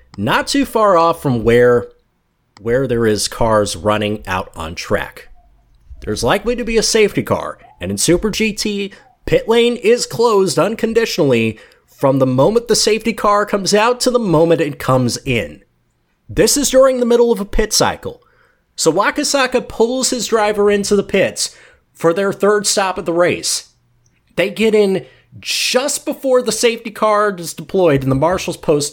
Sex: male